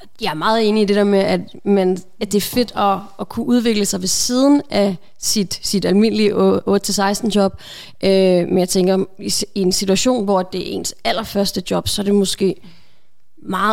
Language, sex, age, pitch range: Danish, female, 30-49, 195-230 Hz